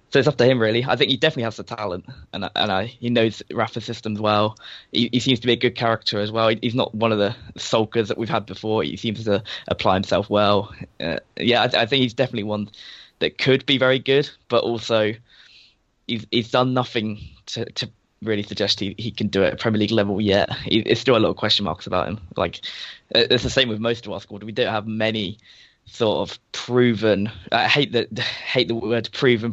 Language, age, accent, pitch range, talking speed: English, 10-29, British, 105-120 Hz, 230 wpm